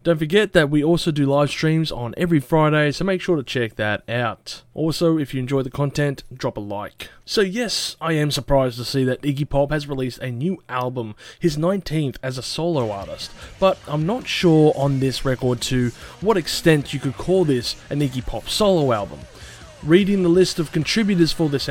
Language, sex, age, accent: English, male, 20-39, Australian